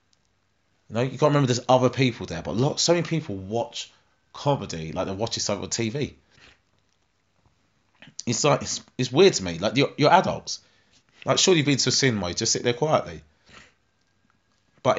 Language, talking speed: English, 190 wpm